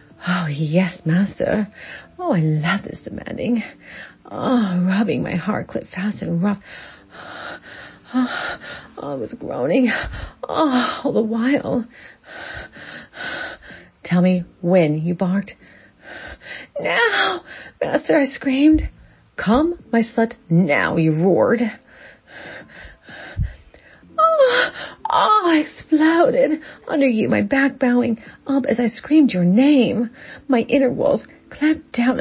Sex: female